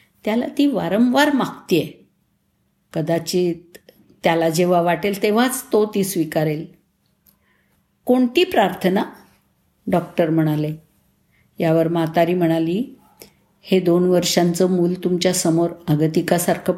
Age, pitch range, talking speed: 50-69, 170-220 Hz, 95 wpm